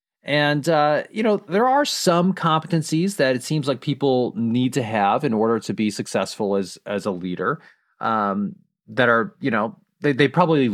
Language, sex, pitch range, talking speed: English, male, 120-165 Hz, 185 wpm